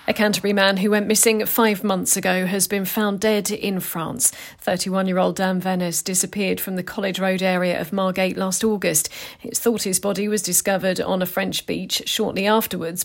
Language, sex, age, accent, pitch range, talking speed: English, female, 40-59, British, 185-215 Hz, 185 wpm